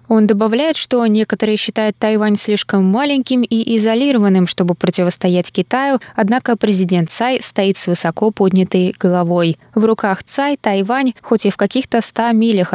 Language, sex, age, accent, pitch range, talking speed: Russian, female, 20-39, native, 185-225 Hz, 145 wpm